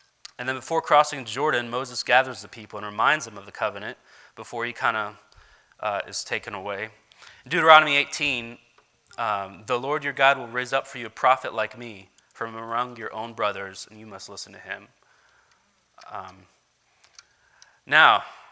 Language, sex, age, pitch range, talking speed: English, male, 20-39, 110-135 Hz, 170 wpm